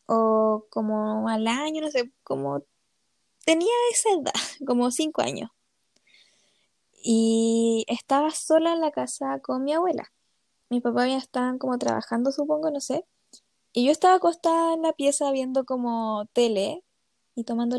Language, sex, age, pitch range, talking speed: Spanish, female, 10-29, 235-300 Hz, 145 wpm